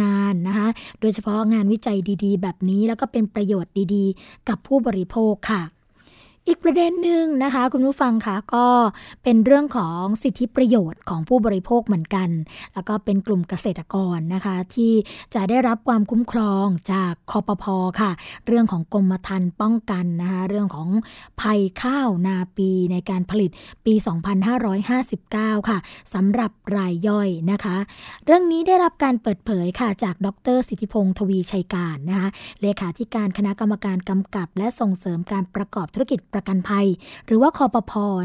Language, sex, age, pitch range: Thai, female, 20-39, 195-240 Hz